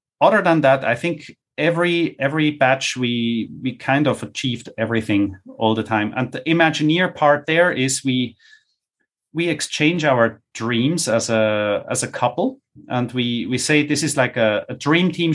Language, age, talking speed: English, 30-49, 170 wpm